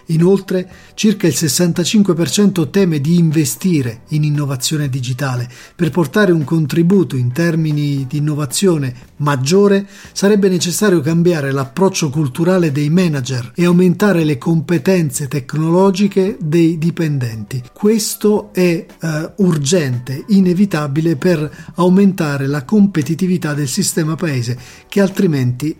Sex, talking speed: male, 110 wpm